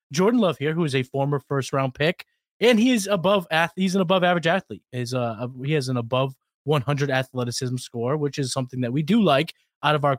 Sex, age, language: male, 20-39, English